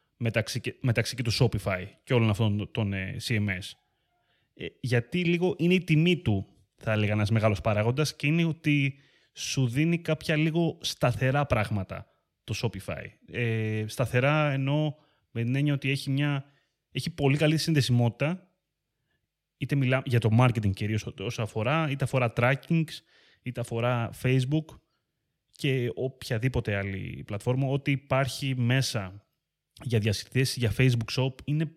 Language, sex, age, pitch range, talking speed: Greek, male, 20-39, 105-140 Hz, 130 wpm